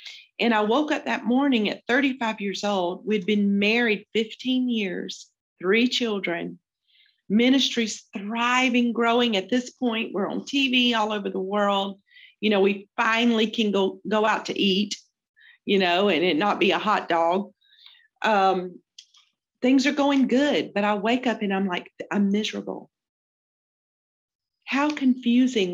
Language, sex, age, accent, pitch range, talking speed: English, female, 40-59, American, 195-250 Hz, 150 wpm